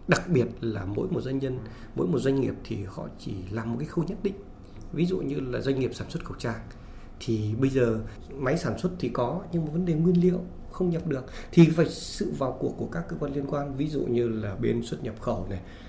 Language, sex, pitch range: Vietnamese, male, 115-170 Hz